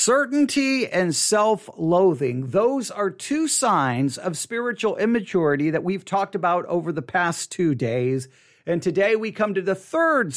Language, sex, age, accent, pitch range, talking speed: English, male, 40-59, American, 150-215 Hz, 150 wpm